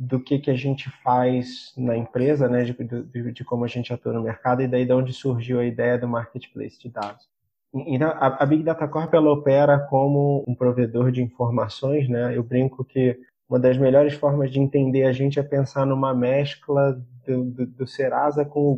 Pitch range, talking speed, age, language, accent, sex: 125-150 Hz, 205 wpm, 20-39, Portuguese, Brazilian, male